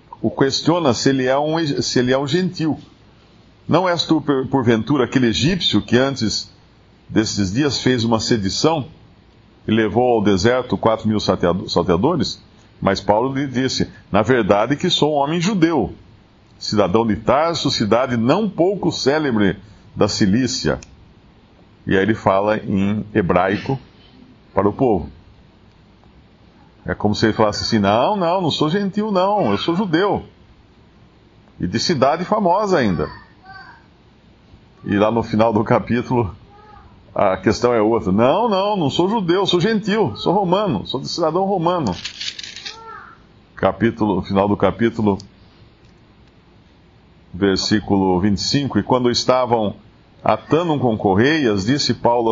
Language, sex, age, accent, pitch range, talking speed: Portuguese, male, 50-69, Brazilian, 105-145 Hz, 130 wpm